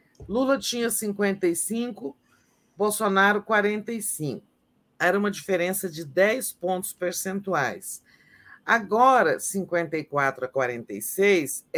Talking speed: 80 wpm